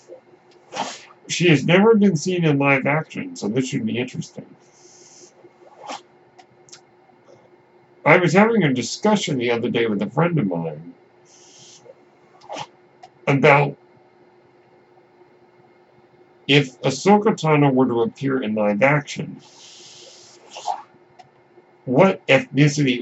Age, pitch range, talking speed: 60-79, 120-155 Hz, 100 wpm